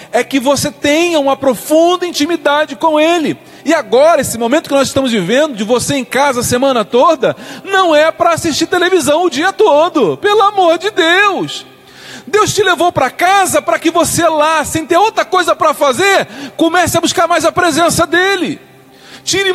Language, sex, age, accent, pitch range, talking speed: Portuguese, male, 40-59, Brazilian, 285-355 Hz, 180 wpm